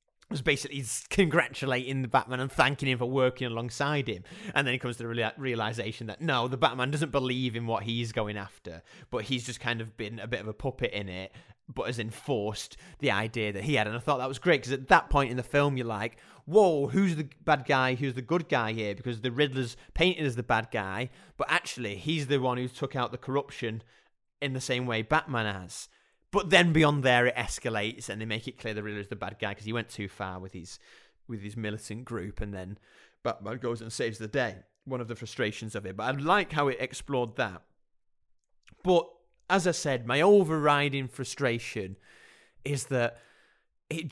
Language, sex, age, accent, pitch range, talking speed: English, male, 30-49, British, 110-145 Hz, 215 wpm